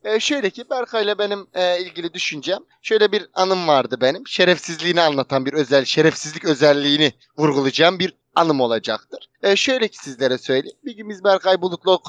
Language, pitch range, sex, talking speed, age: Turkish, 145-205 Hz, male, 150 wpm, 30-49